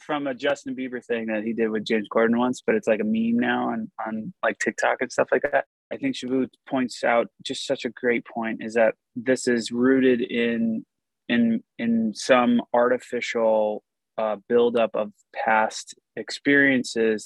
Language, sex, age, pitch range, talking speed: English, male, 20-39, 110-130 Hz, 175 wpm